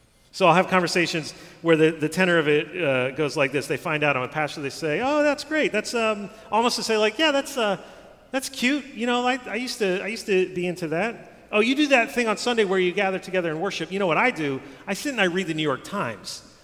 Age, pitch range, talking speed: 40-59, 135-190 Hz, 270 wpm